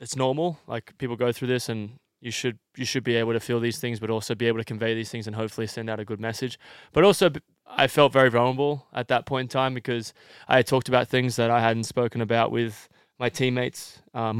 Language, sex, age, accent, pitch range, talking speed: English, male, 20-39, Australian, 110-125 Hz, 245 wpm